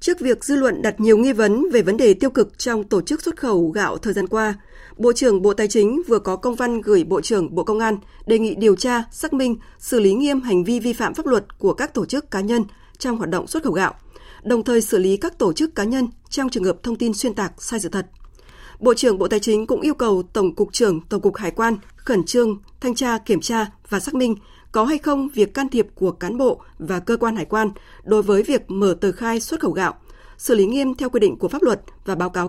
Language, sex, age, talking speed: Vietnamese, female, 20-39, 260 wpm